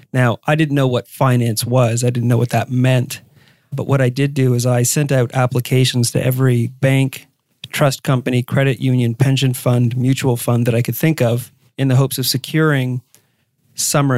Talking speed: 190 wpm